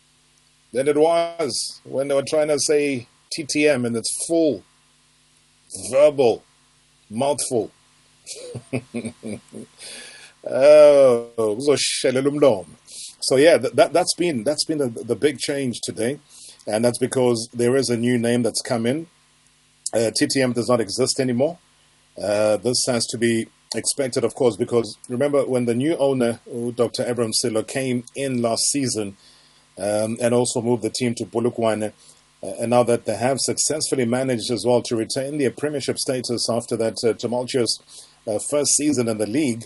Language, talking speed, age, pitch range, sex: English, 150 wpm, 40-59, 115-140 Hz, male